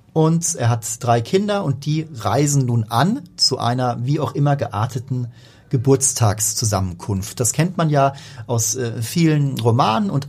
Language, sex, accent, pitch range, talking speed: German, male, German, 115-160 Hz, 150 wpm